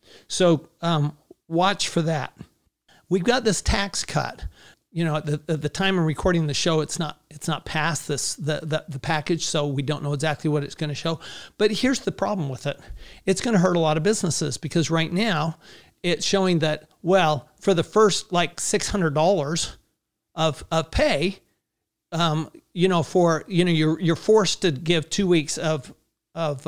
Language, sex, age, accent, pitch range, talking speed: English, male, 40-59, American, 150-185 Hz, 195 wpm